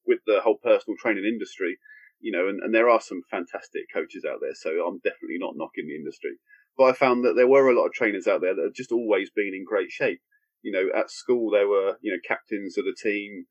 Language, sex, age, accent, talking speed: English, male, 30-49, British, 250 wpm